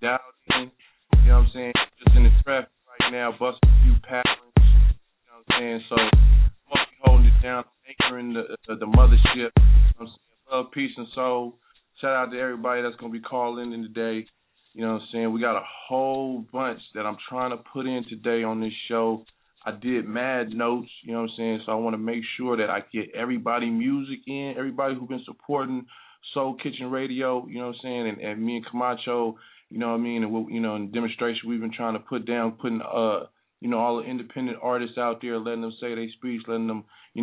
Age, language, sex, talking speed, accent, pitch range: 20-39, English, male, 230 wpm, American, 115-130 Hz